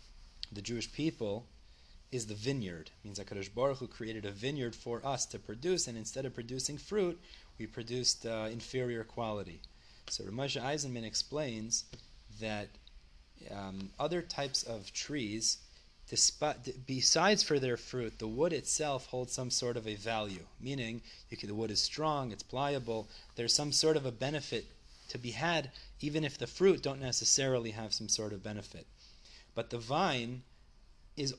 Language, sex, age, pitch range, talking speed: English, male, 30-49, 105-135 Hz, 165 wpm